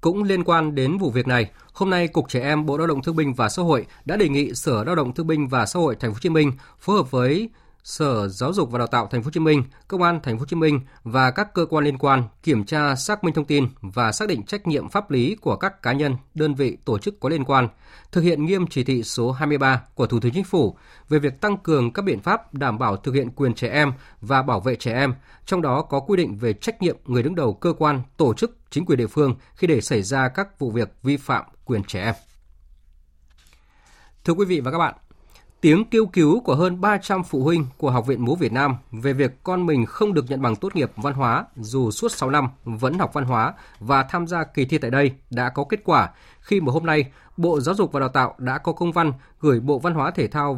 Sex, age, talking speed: male, 20-39, 265 wpm